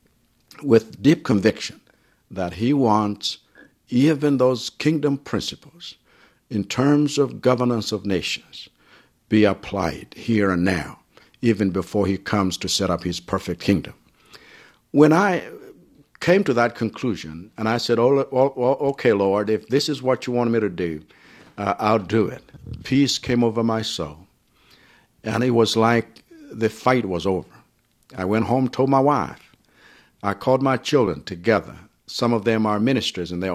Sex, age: male, 60-79